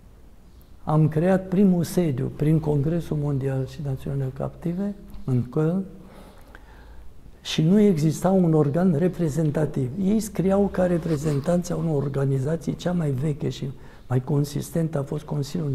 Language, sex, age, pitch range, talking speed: Romanian, male, 60-79, 140-165 Hz, 125 wpm